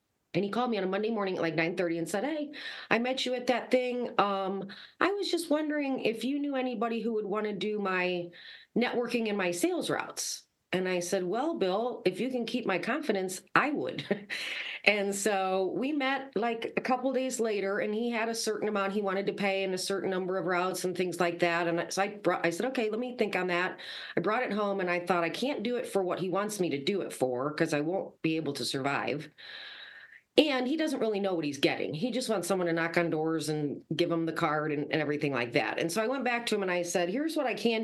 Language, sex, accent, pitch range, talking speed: English, female, American, 170-225 Hz, 255 wpm